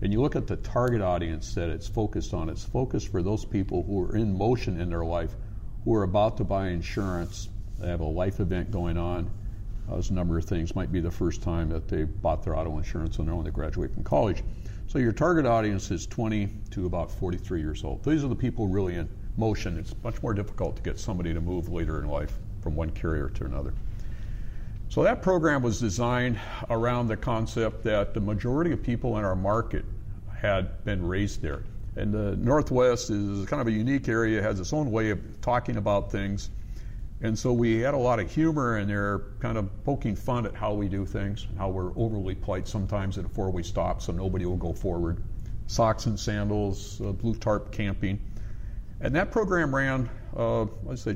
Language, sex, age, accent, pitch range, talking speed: English, male, 60-79, American, 95-115 Hz, 205 wpm